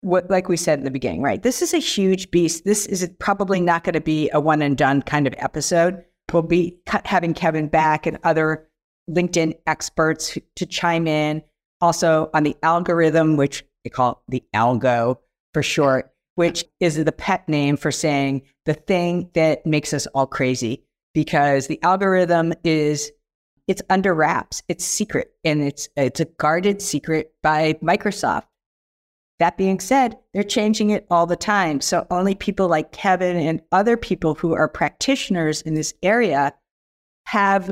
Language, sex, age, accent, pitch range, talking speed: English, female, 50-69, American, 145-180 Hz, 165 wpm